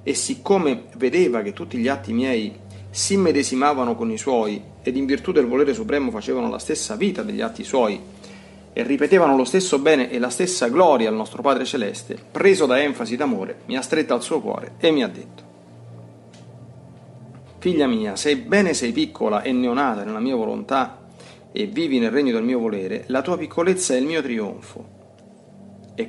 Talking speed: 180 wpm